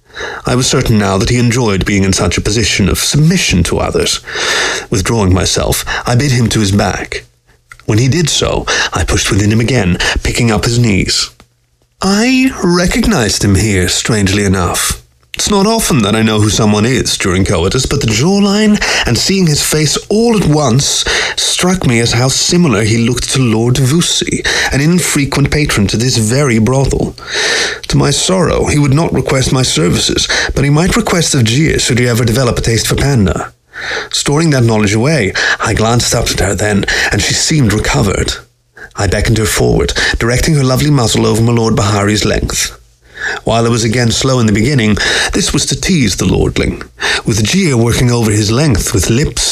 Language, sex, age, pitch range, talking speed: English, male, 30-49, 105-140 Hz, 185 wpm